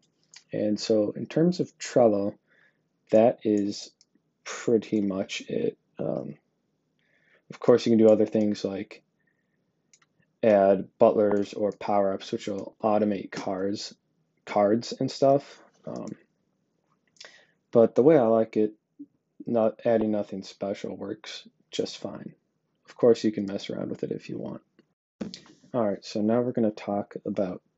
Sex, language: male, English